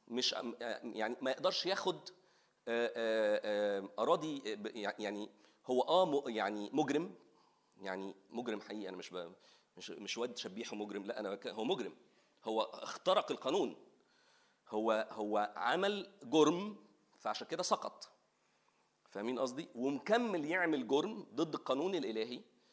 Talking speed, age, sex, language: 115 wpm, 40-59, male, Arabic